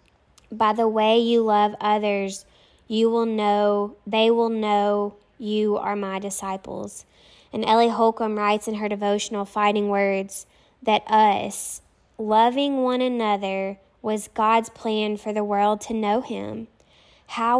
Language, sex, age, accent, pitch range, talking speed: English, female, 10-29, American, 205-220 Hz, 135 wpm